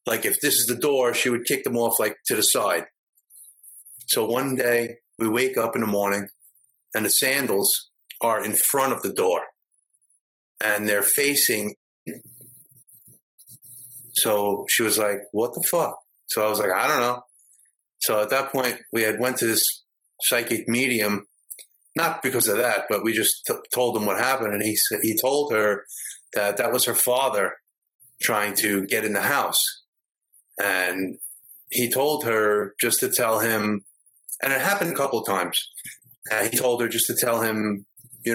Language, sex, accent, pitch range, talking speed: English, male, American, 105-125 Hz, 175 wpm